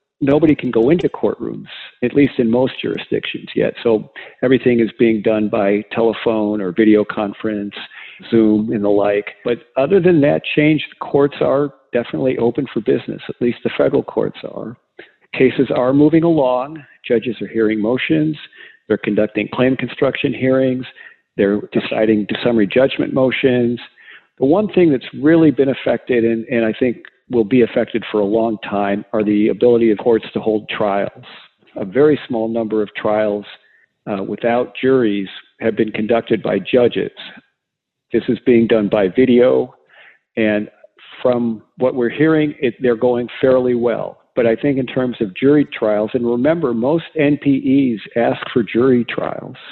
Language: English